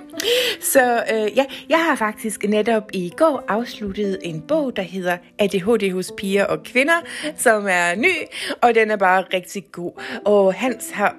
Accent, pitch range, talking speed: native, 180-245 Hz, 165 wpm